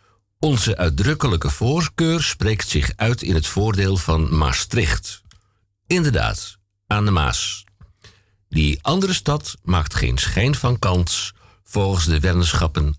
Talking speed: 120 wpm